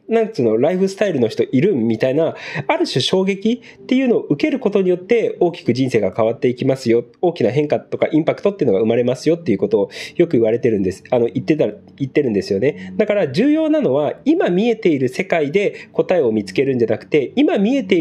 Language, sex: Japanese, male